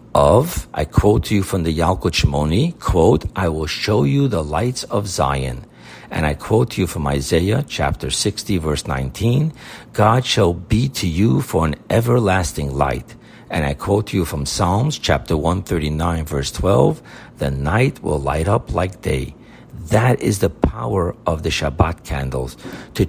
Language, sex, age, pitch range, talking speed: English, male, 60-79, 80-115 Hz, 170 wpm